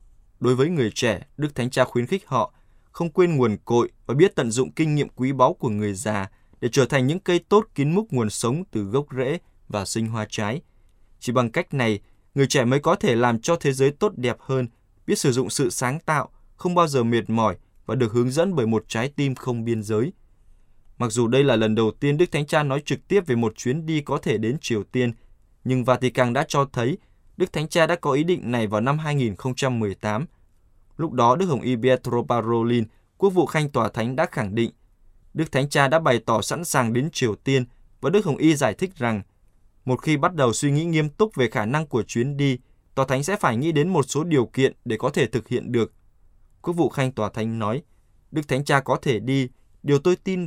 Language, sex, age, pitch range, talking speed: Vietnamese, male, 20-39, 110-145 Hz, 235 wpm